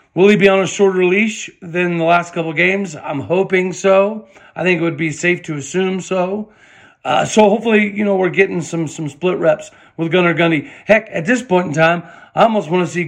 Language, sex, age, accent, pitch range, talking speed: English, male, 40-59, American, 155-190 Hz, 225 wpm